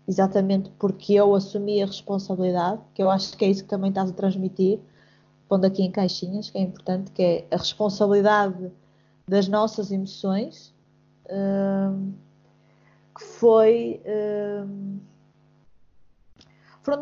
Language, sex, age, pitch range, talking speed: Portuguese, female, 20-39, 185-220 Hz, 120 wpm